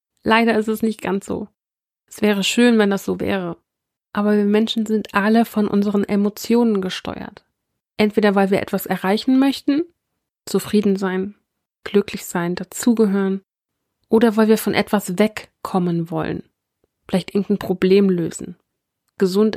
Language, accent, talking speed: German, German, 140 wpm